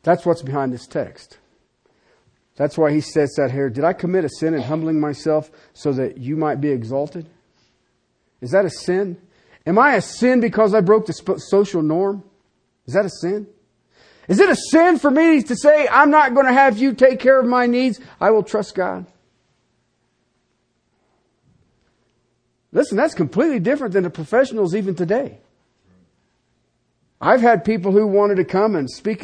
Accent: American